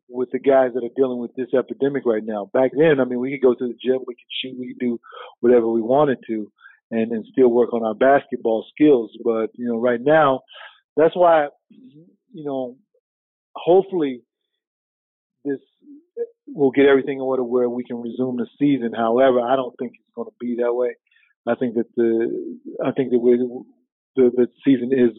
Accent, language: American, English